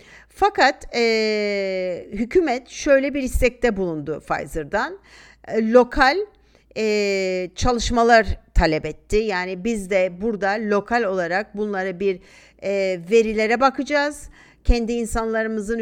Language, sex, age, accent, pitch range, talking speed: Turkish, female, 50-69, native, 195-250 Hz, 85 wpm